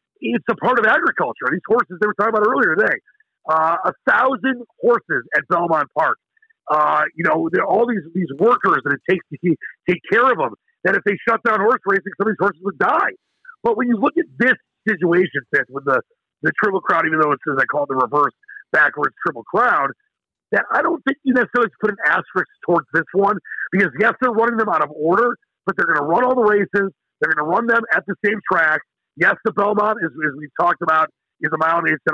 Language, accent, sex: English, American, male